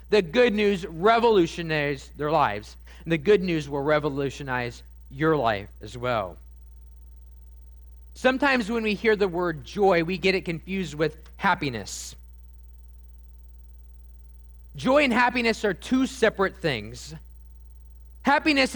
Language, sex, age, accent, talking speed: English, male, 30-49, American, 120 wpm